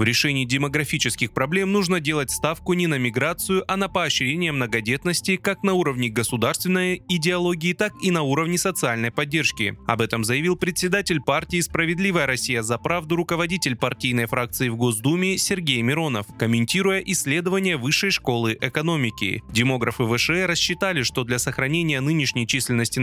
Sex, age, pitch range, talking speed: male, 20-39, 125-180 Hz, 140 wpm